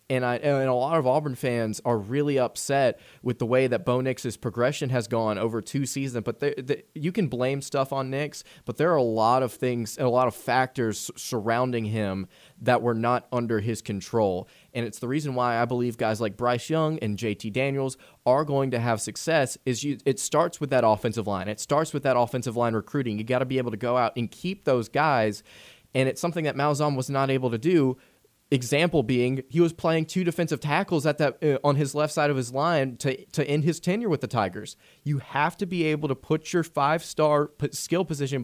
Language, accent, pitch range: English, American, 115-145 Hz